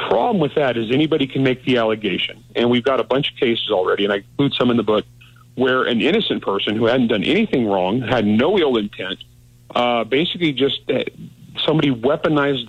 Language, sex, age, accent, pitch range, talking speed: English, male, 40-59, American, 120-135 Hz, 205 wpm